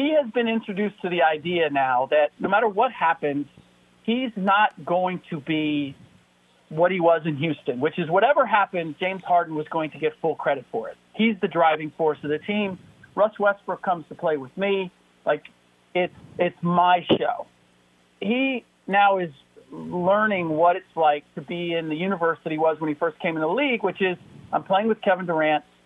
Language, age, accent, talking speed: English, 40-59, American, 195 wpm